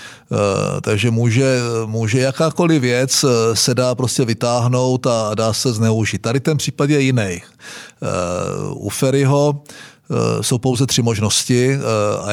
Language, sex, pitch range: Czech, male, 115-140 Hz